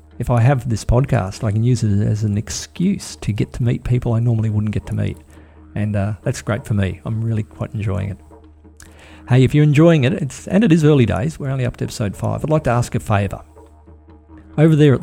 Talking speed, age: 235 wpm, 50-69